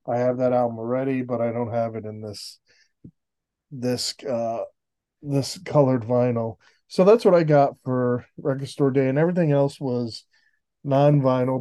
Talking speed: 160 wpm